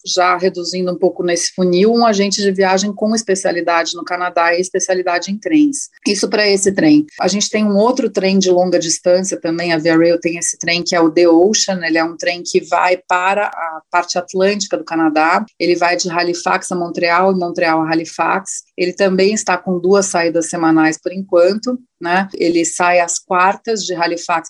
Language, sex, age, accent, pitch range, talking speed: Portuguese, female, 30-49, Brazilian, 175-200 Hz, 200 wpm